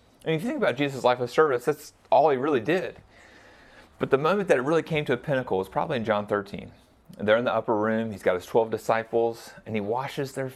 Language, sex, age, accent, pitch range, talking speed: English, male, 30-49, American, 105-145 Hz, 245 wpm